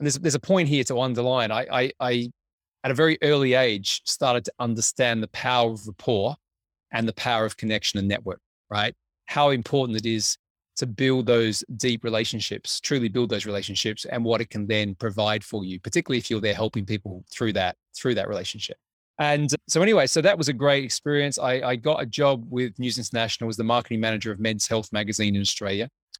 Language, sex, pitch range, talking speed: English, male, 105-130 Hz, 205 wpm